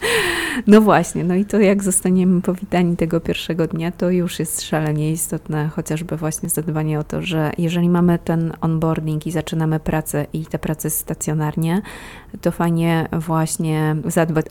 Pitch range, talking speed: 150-170 Hz, 155 wpm